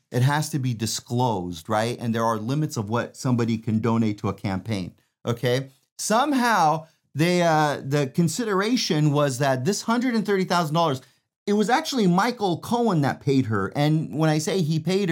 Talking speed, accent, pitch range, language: 185 wpm, American, 120-165 Hz, English